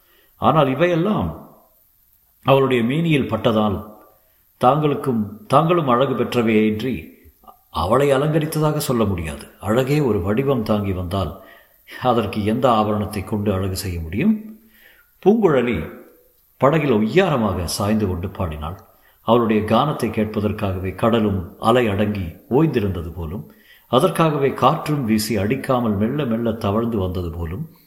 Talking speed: 95 wpm